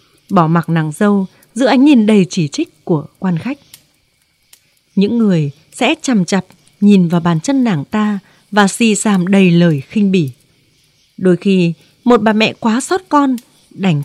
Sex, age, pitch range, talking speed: female, 20-39, 170-225 Hz, 170 wpm